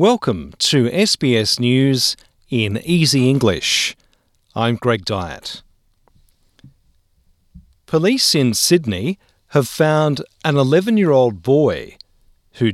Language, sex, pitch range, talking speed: English, male, 110-150 Hz, 90 wpm